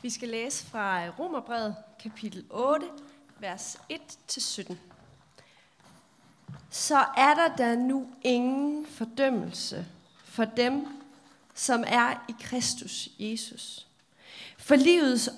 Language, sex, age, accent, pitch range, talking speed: Danish, female, 30-49, native, 230-295 Hz, 100 wpm